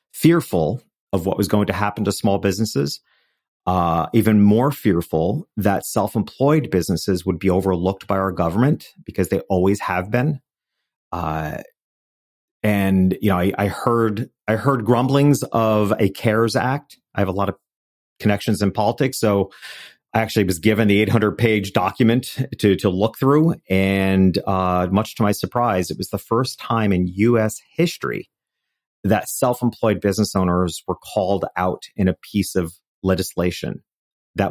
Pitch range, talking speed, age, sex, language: 95-120 Hz, 155 wpm, 40-59, male, English